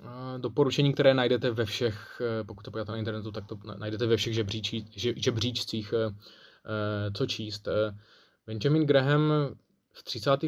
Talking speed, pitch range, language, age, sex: 130 wpm, 110-130 Hz, Czech, 20-39, male